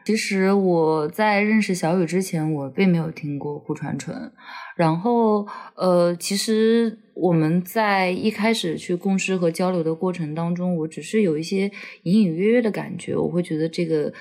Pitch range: 160-205 Hz